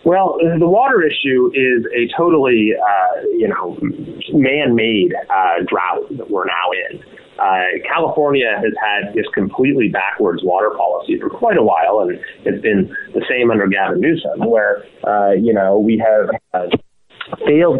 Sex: male